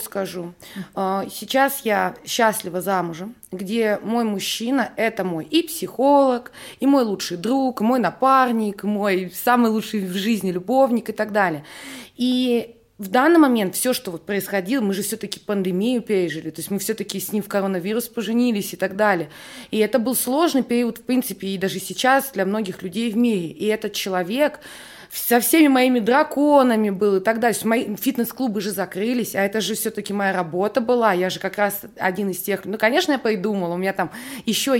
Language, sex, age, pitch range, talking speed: Russian, female, 20-39, 195-240 Hz, 185 wpm